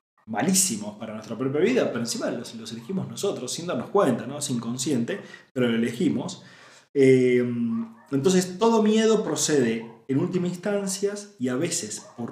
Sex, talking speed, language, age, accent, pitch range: male, 155 wpm, Spanish, 30-49, Argentinian, 125-185 Hz